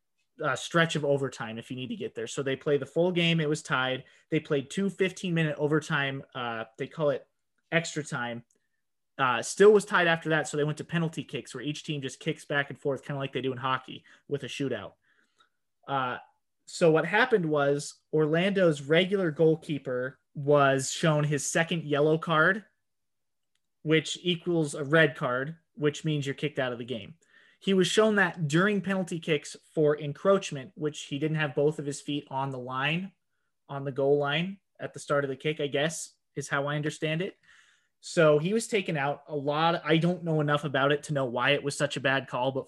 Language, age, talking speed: English, 30-49, 210 wpm